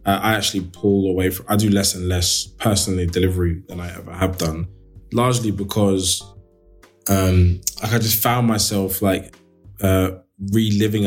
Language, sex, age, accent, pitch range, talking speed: English, male, 20-39, British, 90-105 Hz, 150 wpm